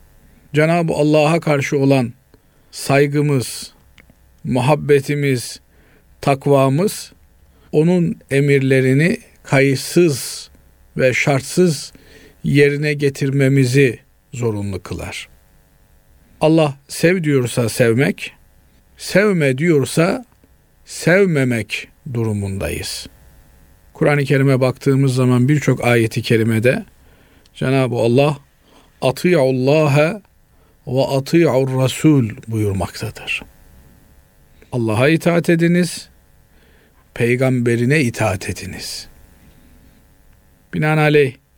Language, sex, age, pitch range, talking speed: Turkish, male, 50-69, 110-150 Hz, 65 wpm